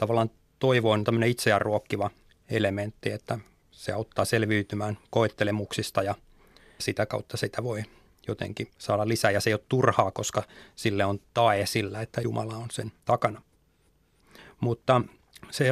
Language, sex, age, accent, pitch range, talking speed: Finnish, male, 30-49, native, 110-125 Hz, 140 wpm